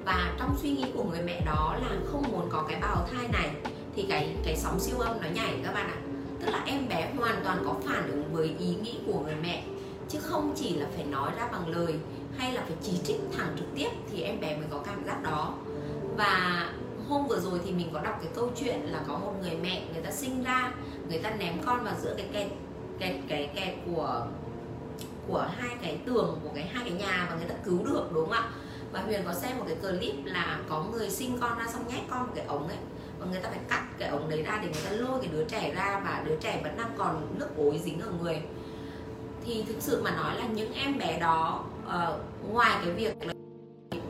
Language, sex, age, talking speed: Vietnamese, female, 20-39, 240 wpm